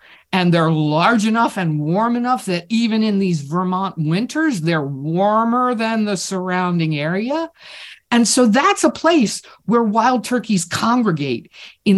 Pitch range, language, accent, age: 165-235 Hz, English, American, 50-69